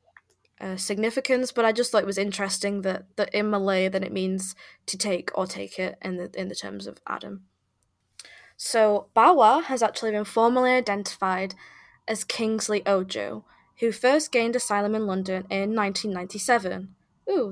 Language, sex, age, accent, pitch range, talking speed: English, female, 10-29, British, 190-225 Hz, 160 wpm